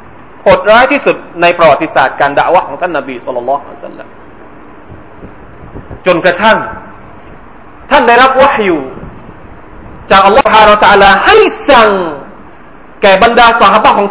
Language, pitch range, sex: Thai, 165-275 Hz, male